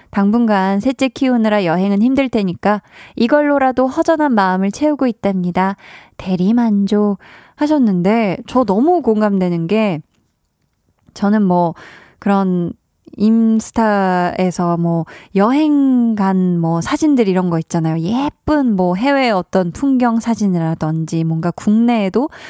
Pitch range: 180-240 Hz